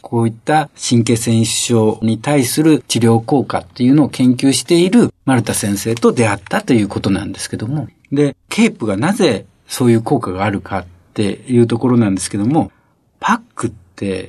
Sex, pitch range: male, 110-160 Hz